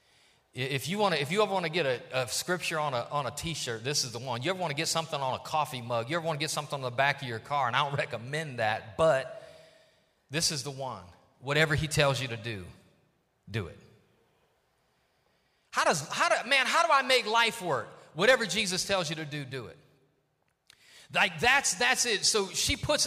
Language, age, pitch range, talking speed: English, 30-49, 150-210 Hz, 230 wpm